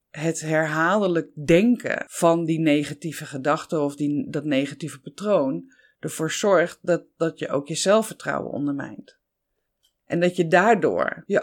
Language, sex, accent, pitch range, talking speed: Dutch, female, Dutch, 145-180 Hz, 130 wpm